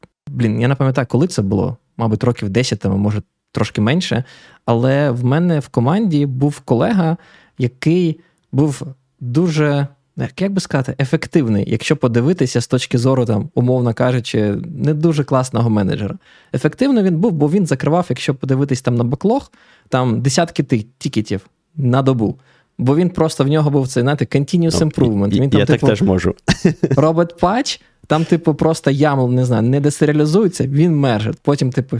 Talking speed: 160 wpm